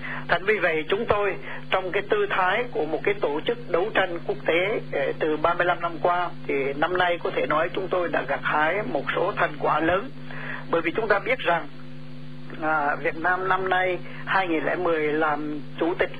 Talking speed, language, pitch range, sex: 195 wpm, Vietnamese, 155-205 Hz, male